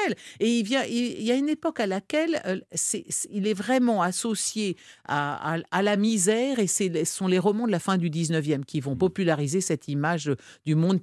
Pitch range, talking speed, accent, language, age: 150-210 Hz, 205 wpm, French, French, 50-69